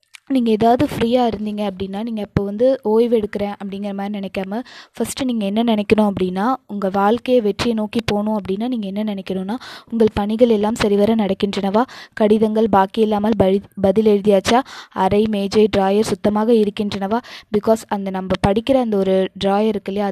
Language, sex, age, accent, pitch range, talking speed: Tamil, female, 20-39, native, 200-225 Hz, 145 wpm